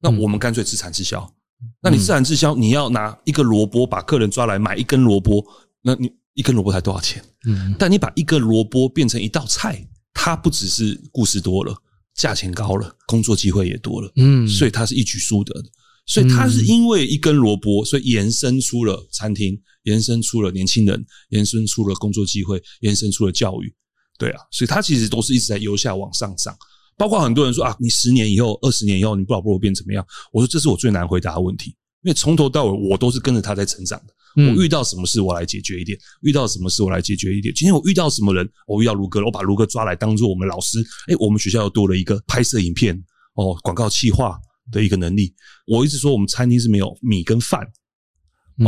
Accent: native